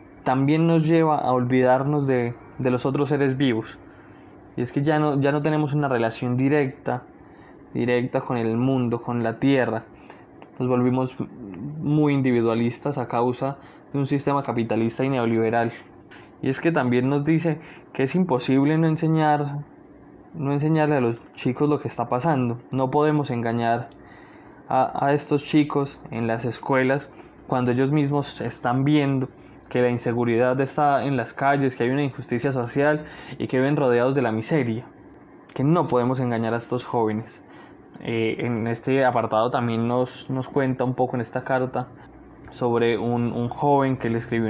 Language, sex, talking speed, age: Spanish, male, 165 wpm, 20-39